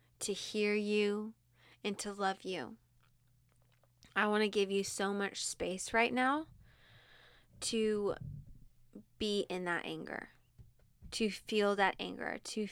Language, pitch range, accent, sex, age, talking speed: English, 180-210 Hz, American, female, 20-39, 125 wpm